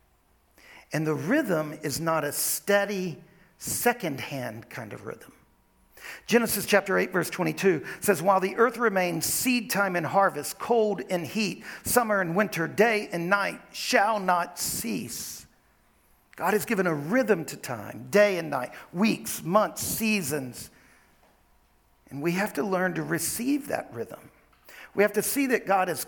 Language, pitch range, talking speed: English, 145-205 Hz, 150 wpm